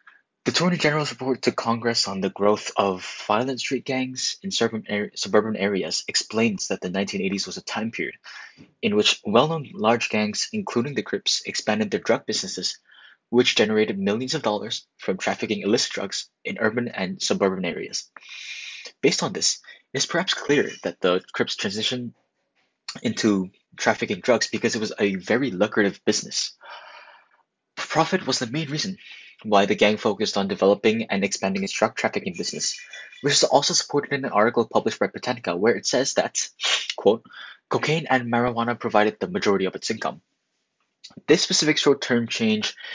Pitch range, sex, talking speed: 105-145 Hz, male, 160 wpm